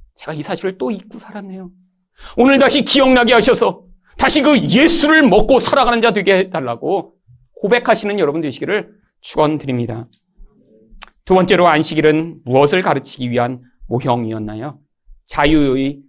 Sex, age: male, 40-59